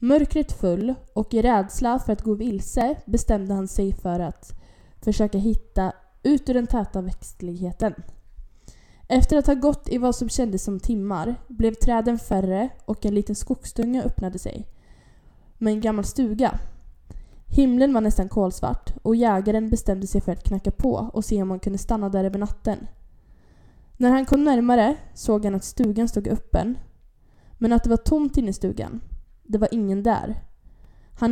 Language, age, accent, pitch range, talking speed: Swedish, 10-29, Norwegian, 195-240 Hz, 170 wpm